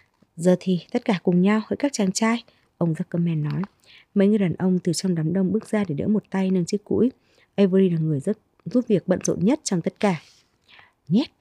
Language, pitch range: Vietnamese, 180-230 Hz